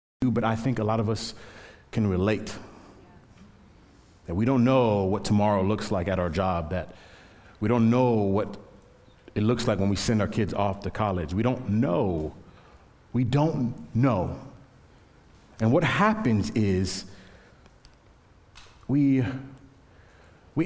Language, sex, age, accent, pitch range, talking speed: English, male, 40-59, American, 100-140 Hz, 140 wpm